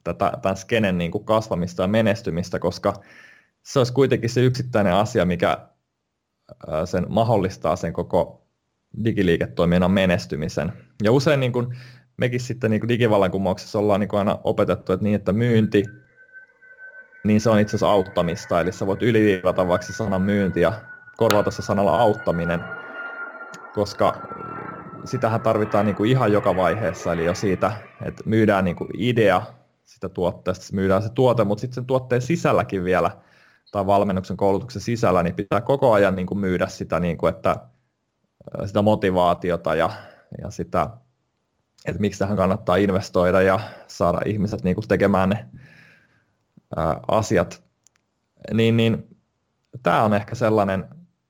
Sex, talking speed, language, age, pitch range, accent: male, 130 wpm, Finnish, 20-39, 95-120 Hz, native